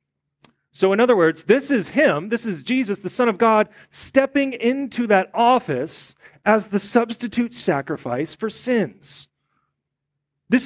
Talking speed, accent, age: 140 wpm, American, 40-59